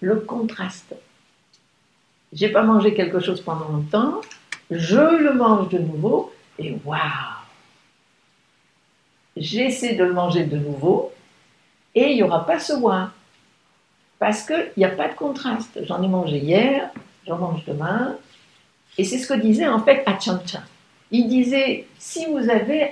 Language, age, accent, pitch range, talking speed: English, 60-79, French, 185-265 Hz, 145 wpm